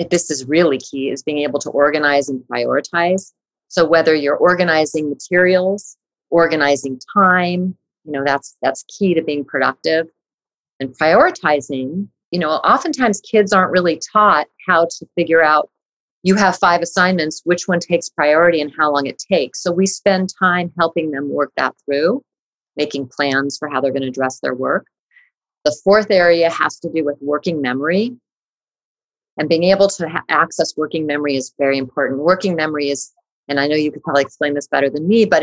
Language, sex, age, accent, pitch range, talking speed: English, female, 40-59, American, 145-180 Hz, 180 wpm